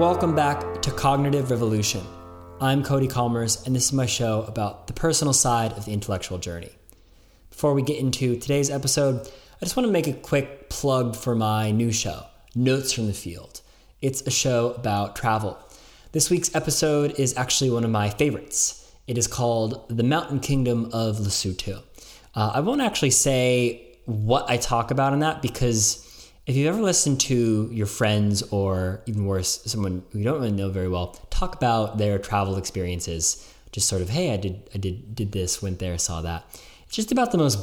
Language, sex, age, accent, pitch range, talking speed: English, male, 20-39, American, 100-135 Hz, 190 wpm